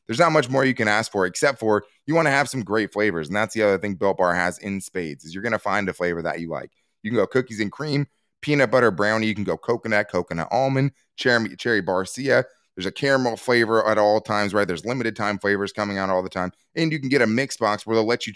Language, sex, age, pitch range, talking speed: English, male, 20-39, 95-125 Hz, 270 wpm